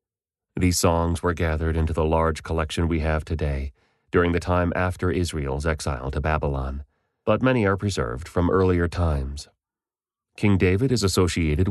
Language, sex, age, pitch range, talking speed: English, male, 30-49, 80-100 Hz, 155 wpm